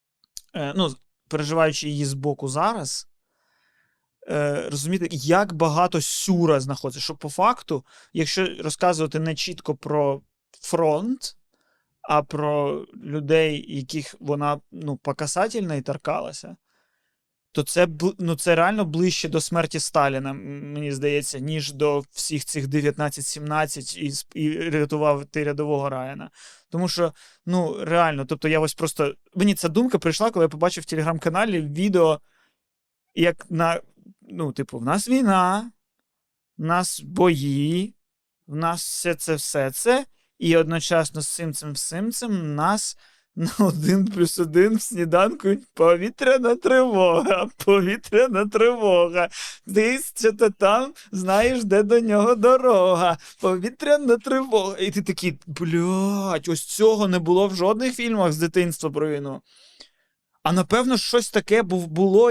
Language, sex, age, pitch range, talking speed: Ukrainian, male, 20-39, 150-200 Hz, 125 wpm